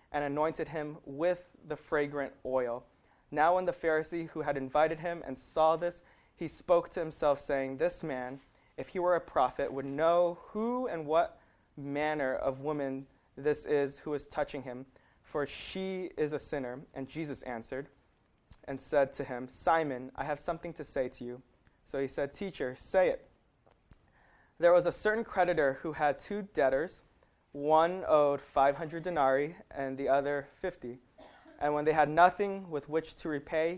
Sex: male